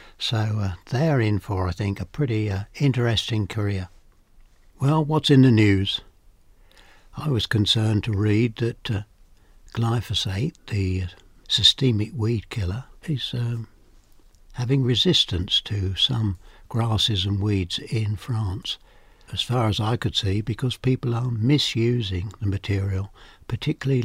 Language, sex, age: English, male, 60-79